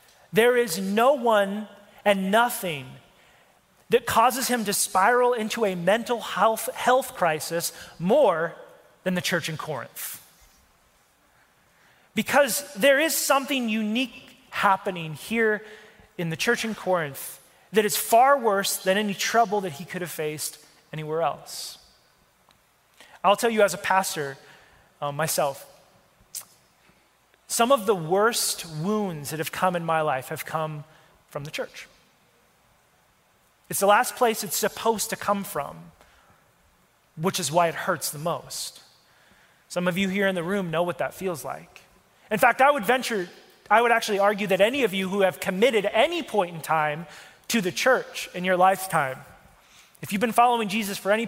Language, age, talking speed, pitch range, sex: English, 30-49, 155 wpm, 170-225 Hz, male